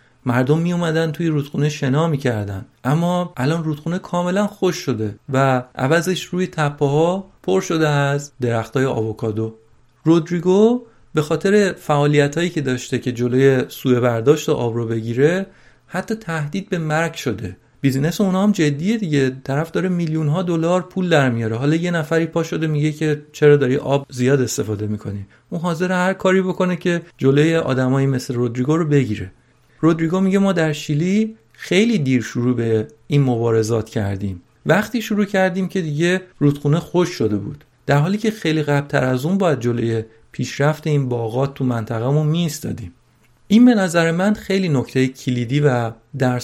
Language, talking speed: Persian, 160 wpm